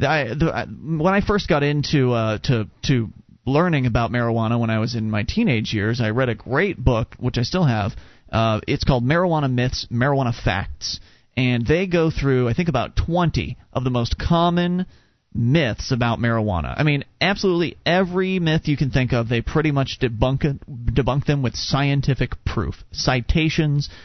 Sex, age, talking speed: male, 30-49, 175 wpm